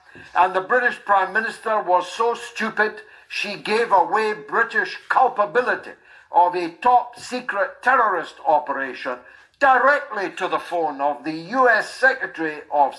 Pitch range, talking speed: 170-245 Hz, 130 wpm